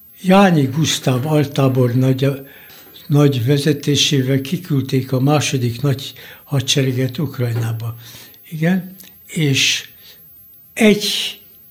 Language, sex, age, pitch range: Hungarian, male, 60-79, 125-155 Hz